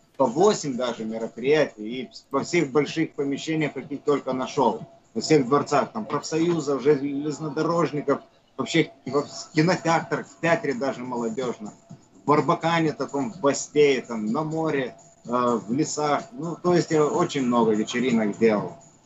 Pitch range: 125-155 Hz